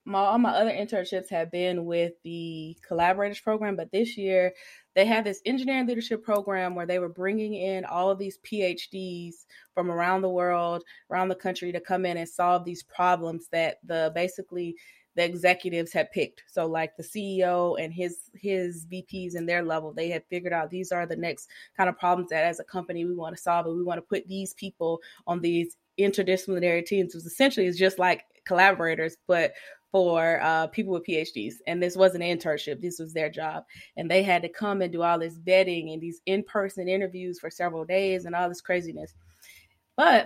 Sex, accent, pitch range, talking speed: female, American, 170-195 Hz, 200 wpm